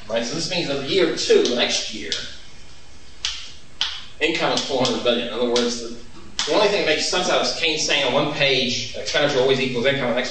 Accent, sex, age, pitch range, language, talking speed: American, male, 30-49, 110-140 Hz, English, 215 wpm